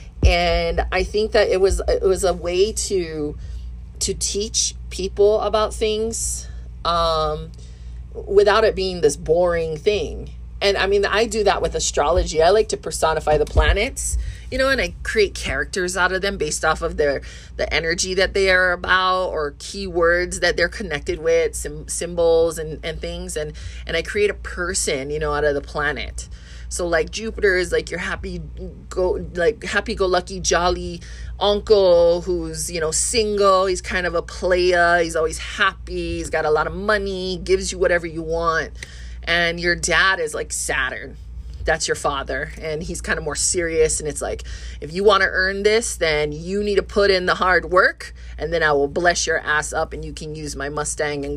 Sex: female